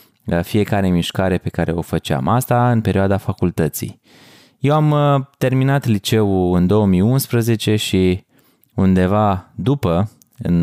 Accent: native